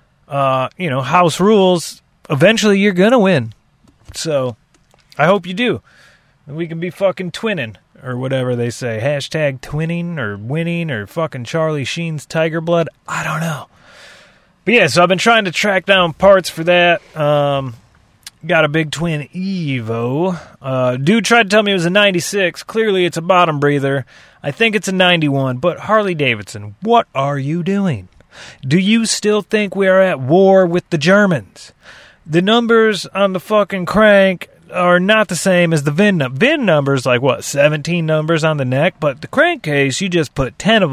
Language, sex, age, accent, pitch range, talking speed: English, male, 30-49, American, 140-185 Hz, 180 wpm